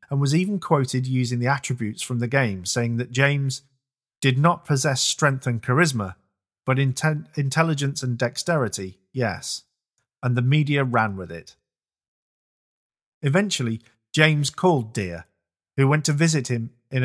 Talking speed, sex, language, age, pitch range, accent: 145 wpm, male, English, 40-59, 115-150 Hz, British